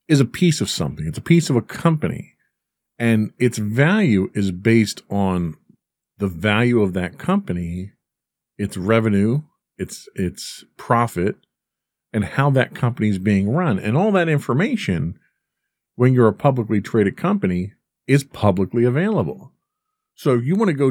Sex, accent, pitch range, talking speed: male, American, 100-140 Hz, 150 wpm